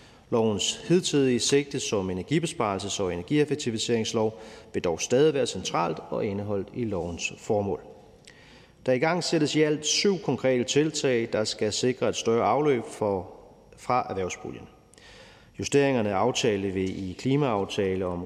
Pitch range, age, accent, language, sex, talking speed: 105-140 Hz, 30-49, native, Danish, male, 140 wpm